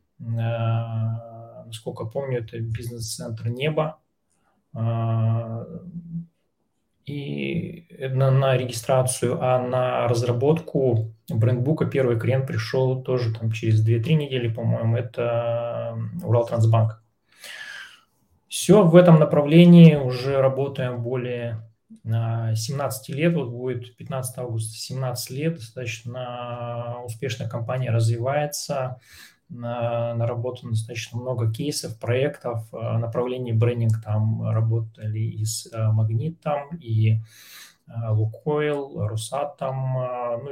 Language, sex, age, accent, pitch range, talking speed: Russian, male, 20-39, native, 115-130 Hz, 90 wpm